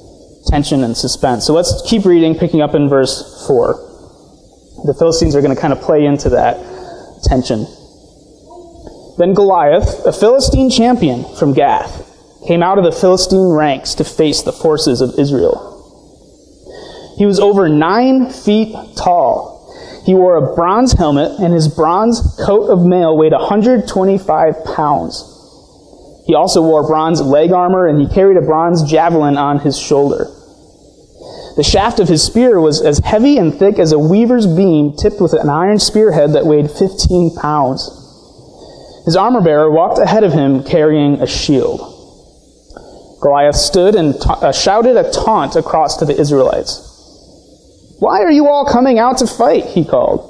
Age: 20-39